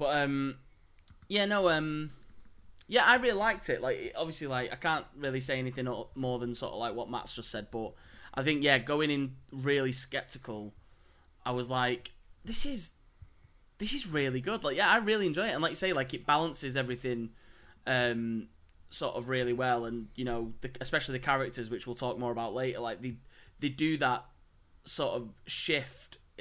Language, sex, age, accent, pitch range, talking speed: English, male, 10-29, British, 120-150 Hz, 190 wpm